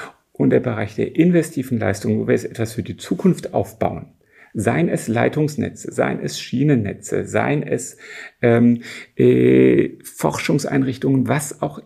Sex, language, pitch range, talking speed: male, German, 100-135 Hz, 135 wpm